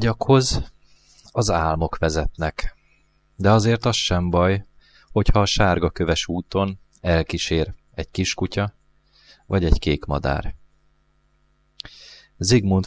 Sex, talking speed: male, 105 wpm